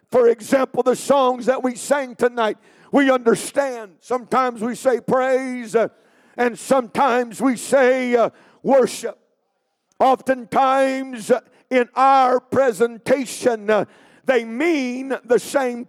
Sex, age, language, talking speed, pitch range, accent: male, 50-69, English, 100 wpm, 230-270 Hz, American